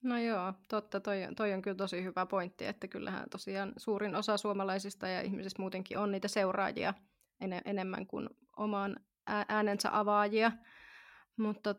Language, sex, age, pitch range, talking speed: Finnish, female, 20-39, 190-225 Hz, 155 wpm